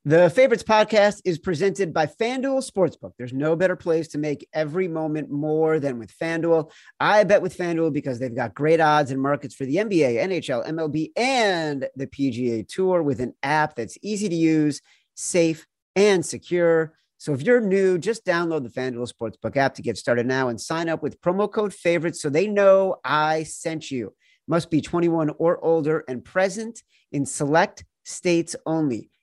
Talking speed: 180 wpm